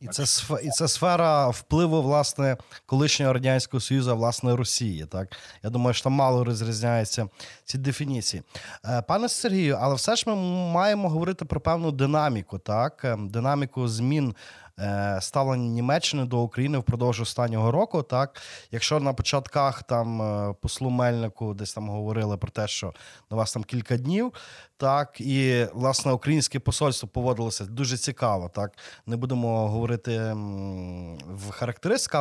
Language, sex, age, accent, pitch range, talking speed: Ukrainian, male, 20-39, native, 115-150 Hz, 140 wpm